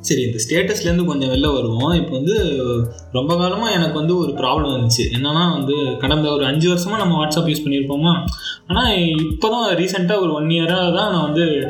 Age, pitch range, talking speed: 20-39, 140-175 Hz, 175 wpm